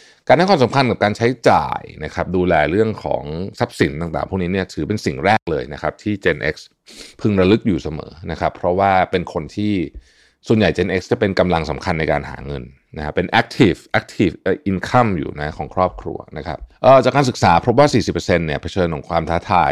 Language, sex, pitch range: Thai, male, 80-105 Hz